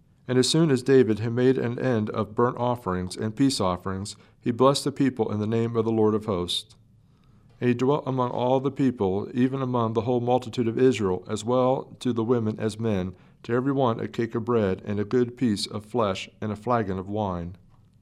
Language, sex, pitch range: English, male, 105-125 Hz